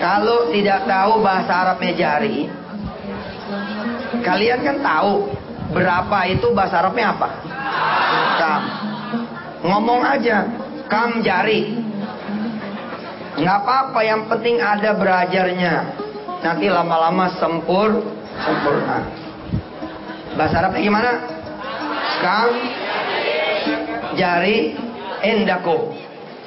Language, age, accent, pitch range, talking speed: English, 40-59, Indonesian, 185-235 Hz, 80 wpm